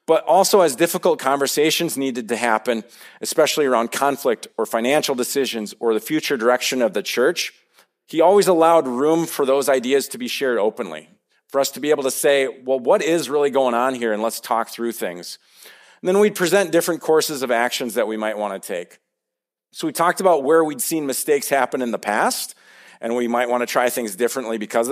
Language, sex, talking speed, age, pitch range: English, male, 205 wpm, 40-59, 120-165 Hz